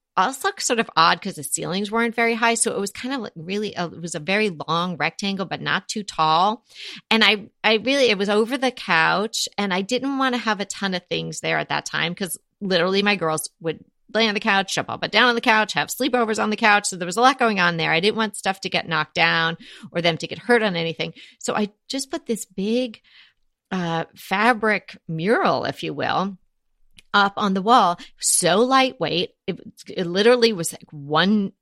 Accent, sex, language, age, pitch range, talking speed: American, female, English, 40-59, 170-225 Hz, 225 wpm